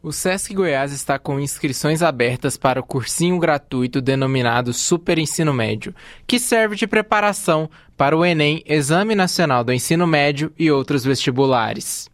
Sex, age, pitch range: male, 20-39, 140-210 Hz